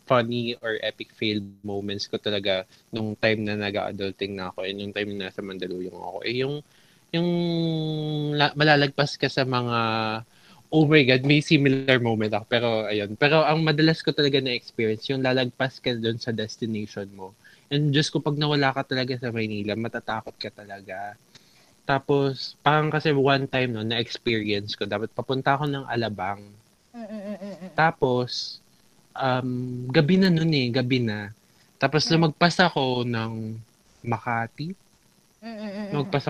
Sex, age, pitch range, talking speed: male, 20-39, 115-160 Hz, 150 wpm